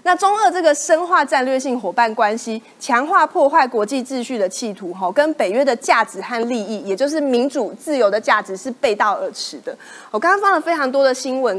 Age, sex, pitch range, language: 30-49, female, 220-305 Hz, Chinese